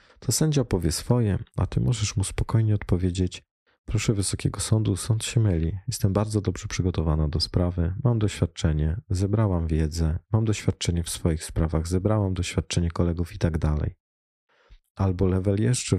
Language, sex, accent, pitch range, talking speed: Polish, male, native, 85-105 Hz, 150 wpm